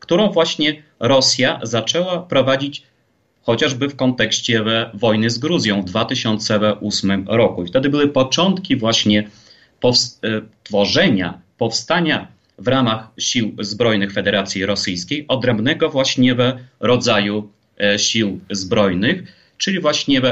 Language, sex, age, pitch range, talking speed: Polish, male, 30-49, 110-140 Hz, 105 wpm